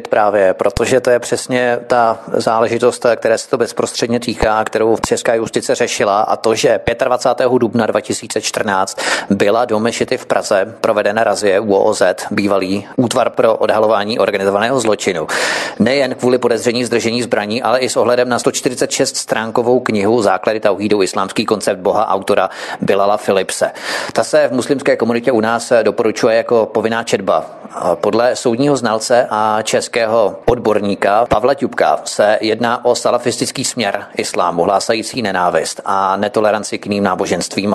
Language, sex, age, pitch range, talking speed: Czech, male, 30-49, 110-130 Hz, 145 wpm